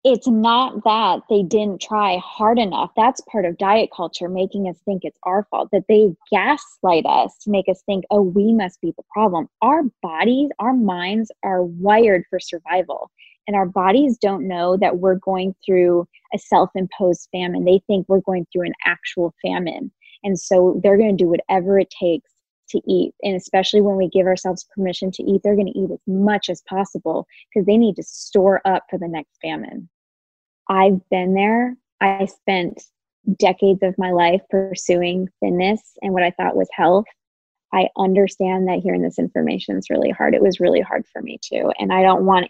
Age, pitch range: 20-39, 180-205 Hz